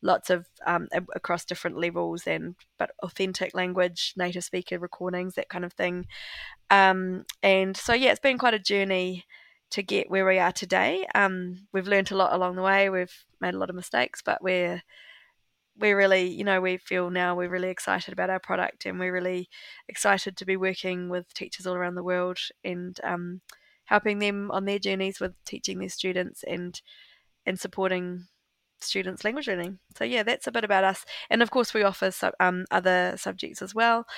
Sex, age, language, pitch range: female, 20-39, English, 180-195 Hz